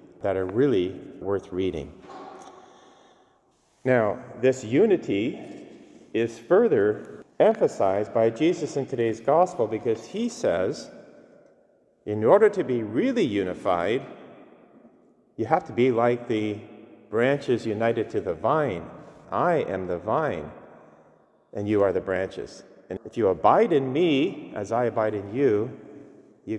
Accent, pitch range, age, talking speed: American, 105-145 Hz, 40-59, 130 wpm